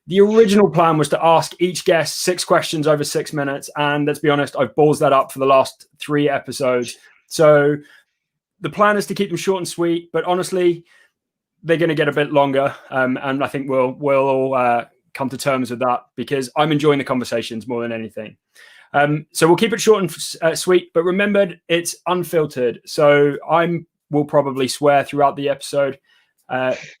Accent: British